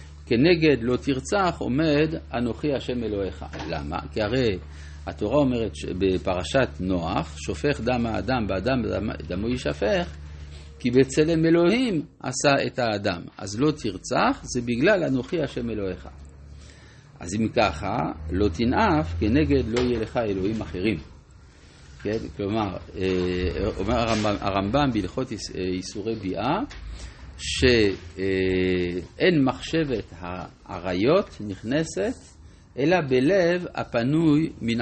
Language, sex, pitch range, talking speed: Hebrew, male, 90-130 Hz, 105 wpm